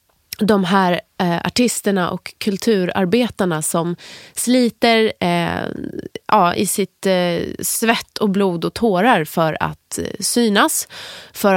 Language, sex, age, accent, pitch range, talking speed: Swedish, female, 20-39, native, 180-235 Hz, 95 wpm